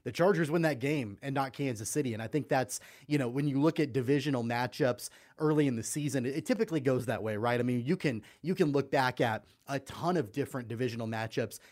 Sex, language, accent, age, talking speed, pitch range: male, English, American, 30-49, 235 wpm, 120-145 Hz